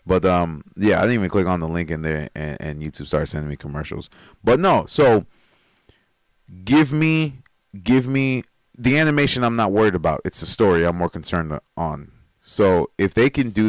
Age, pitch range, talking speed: 30-49, 85-115 Hz, 195 wpm